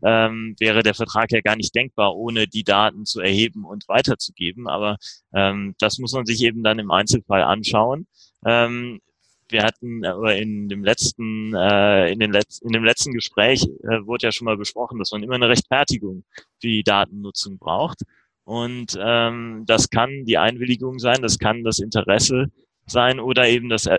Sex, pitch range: male, 105-120 Hz